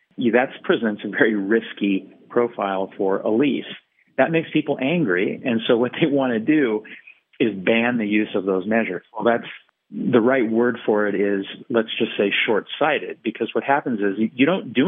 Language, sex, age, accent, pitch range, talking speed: English, male, 40-59, American, 100-120 Hz, 185 wpm